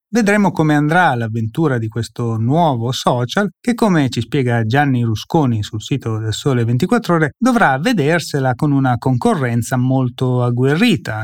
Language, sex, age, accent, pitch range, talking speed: Italian, male, 30-49, native, 120-170 Hz, 145 wpm